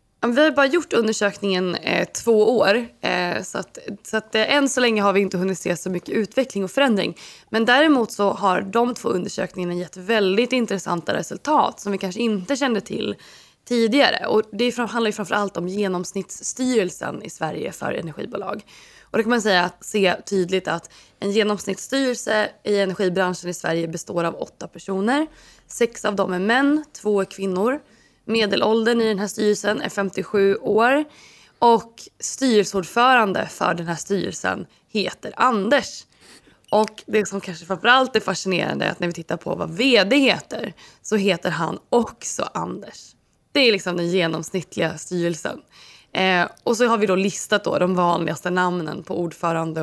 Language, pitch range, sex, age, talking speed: Swedish, 180-230 Hz, female, 20-39, 160 wpm